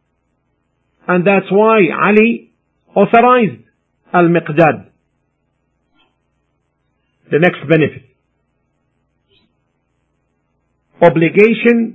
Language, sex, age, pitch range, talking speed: English, male, 50-69, 150-210 Hz, 50 wpm